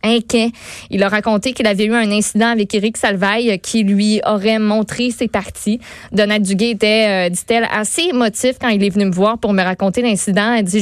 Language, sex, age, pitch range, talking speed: French, female, 20-39, 195-230 Hz, 205 wpm